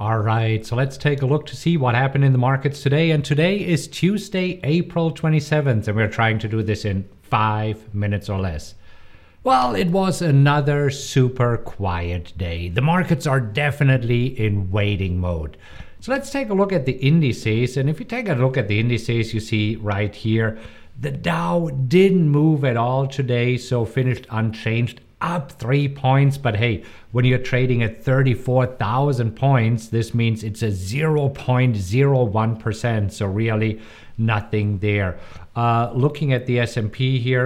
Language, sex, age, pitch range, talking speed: English, male, 50-69, 110-150 Hz, 165 wpm